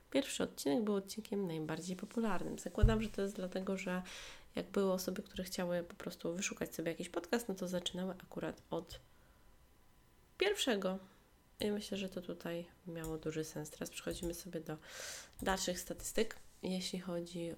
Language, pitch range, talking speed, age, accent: Polish, 155-185 Hz, 155 wpm, 20-39, native